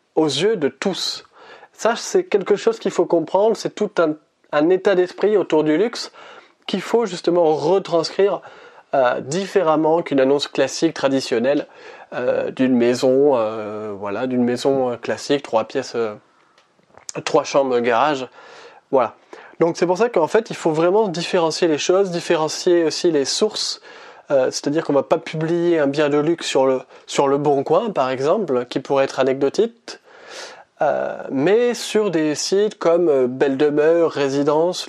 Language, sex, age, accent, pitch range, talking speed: French, male, 20-39, French, 145-210 Hz, 160 wpm